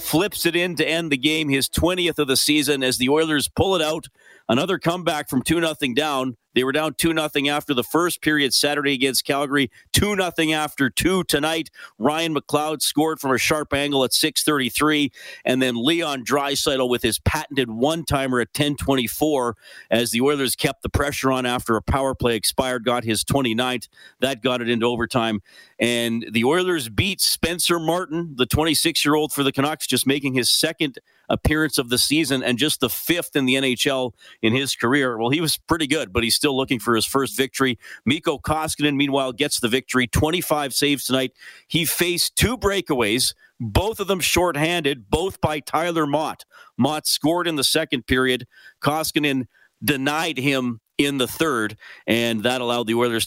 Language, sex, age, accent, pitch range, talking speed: English, male, 40-59, American, 125-155 Hz, 175 wpm